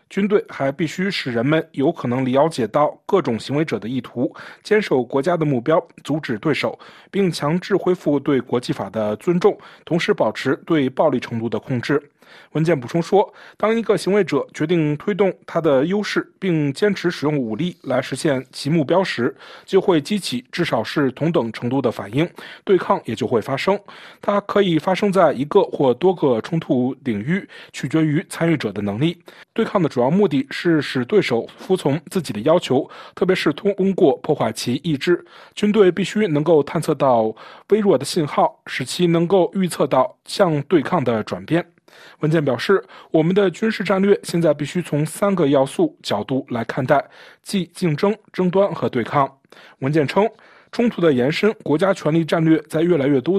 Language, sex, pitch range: Chinese, male, 140-195 Hz